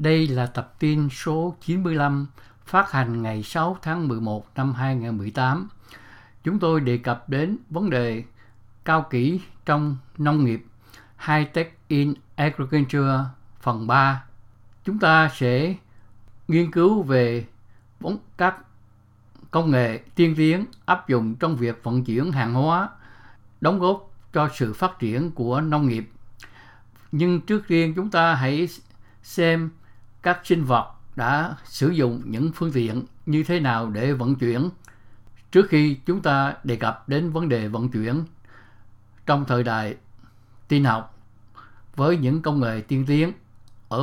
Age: 60-79